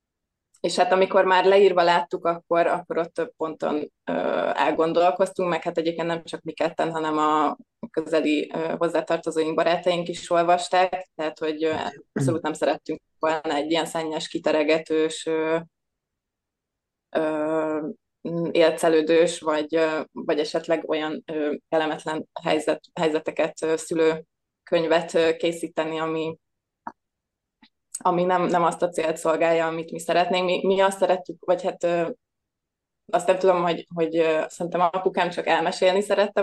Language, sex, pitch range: Hungarian, female, 160-175 Hz